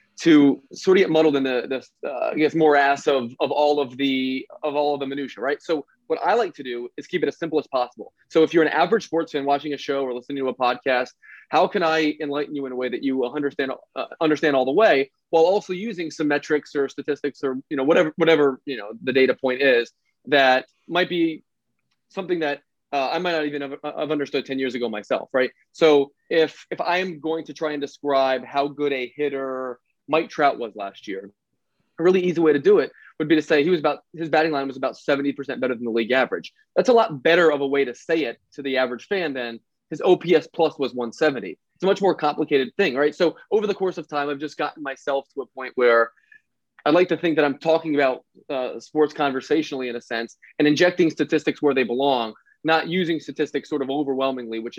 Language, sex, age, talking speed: English, male, 20-39, 240 wpm